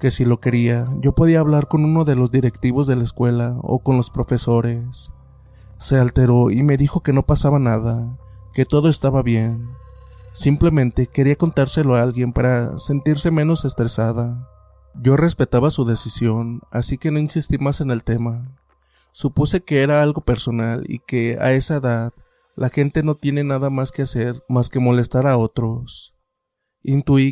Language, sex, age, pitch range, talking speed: Spanish, male, 30-49, 120-140 Hz, 170 wpm